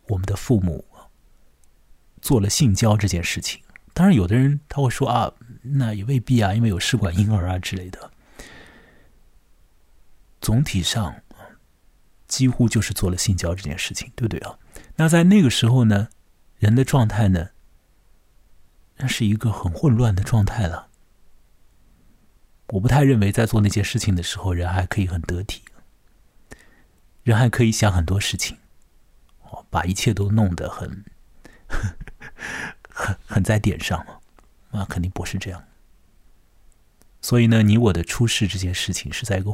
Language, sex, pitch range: Chinese, male, 90-115 Hz